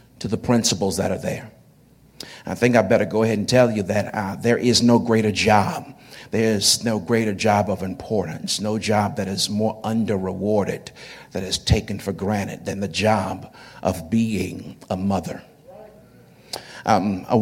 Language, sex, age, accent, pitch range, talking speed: English, male, 50-69, American, 100-120 Hz, 165 wpm